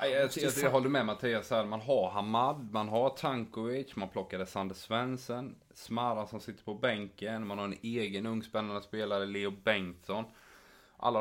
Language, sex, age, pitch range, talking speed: Swedish, male, 20-39, 95-115 Hz, 150 wpm